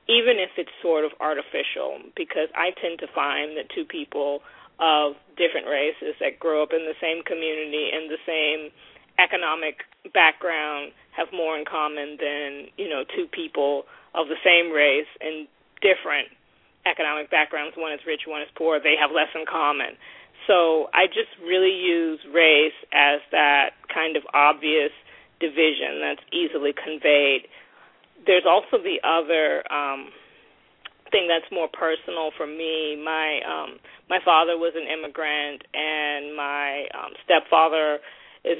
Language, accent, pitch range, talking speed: English, American, 150-170 Hz, 150 wpm